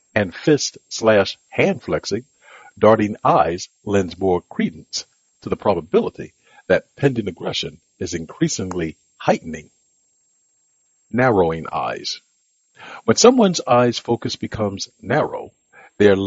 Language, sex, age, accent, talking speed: English, male, 60-79, American, 95 wpm